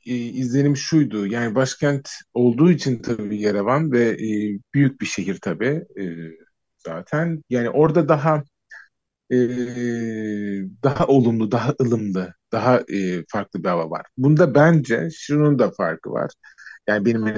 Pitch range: 100-135 Hz